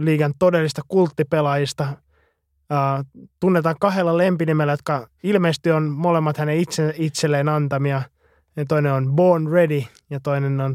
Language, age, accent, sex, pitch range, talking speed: Finnish, 20-39, native, male, 135-155 Hz, 130 wpm